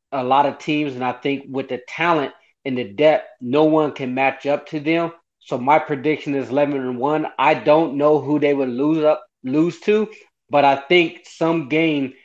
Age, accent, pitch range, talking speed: 30-49, American, 135-150 Hz, 205 wpm